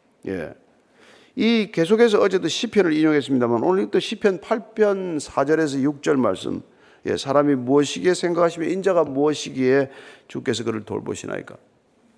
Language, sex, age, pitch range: Korean, male, 50-69, 145-220 Hz